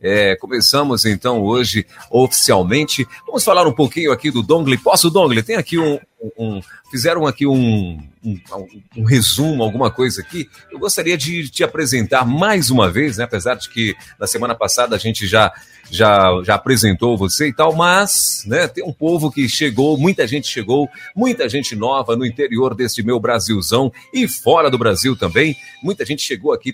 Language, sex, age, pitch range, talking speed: Portuguese, male, 40-59, 110-150 Hz, 180 wpm